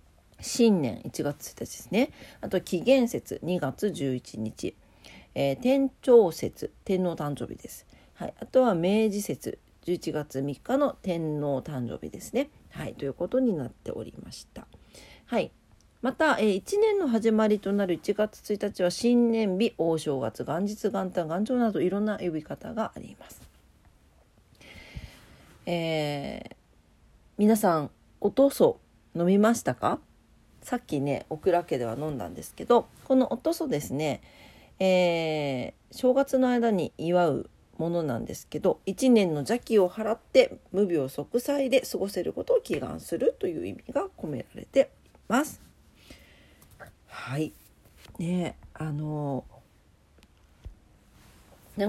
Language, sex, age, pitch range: Japanese, female, 40-59, 150-240 Hz